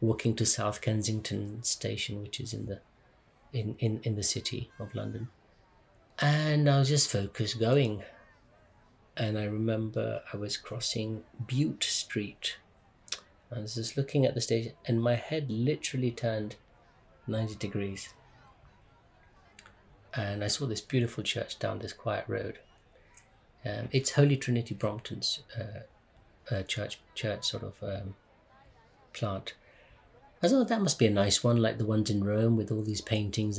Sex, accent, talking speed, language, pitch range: male, British, 150 wpm, English, 105-125 Hz